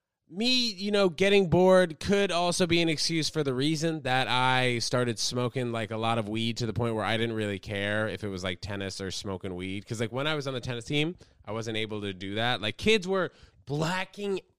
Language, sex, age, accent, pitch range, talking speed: English, male, 20-39, American, 100-145 Hz, 235 wpm